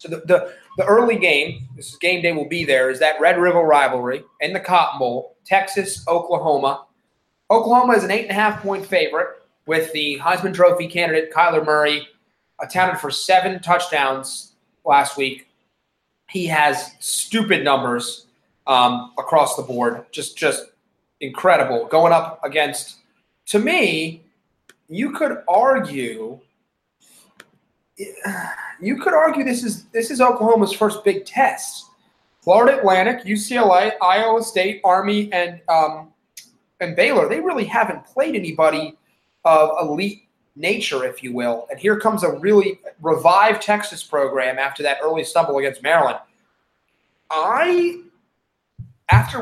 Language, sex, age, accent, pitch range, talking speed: English, male, 30-49, American, 155-215 Hz, 130 wpm